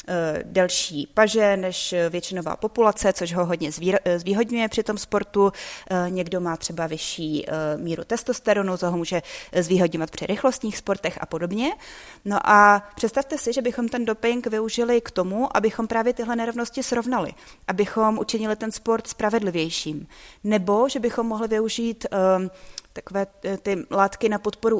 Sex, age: female, 30-49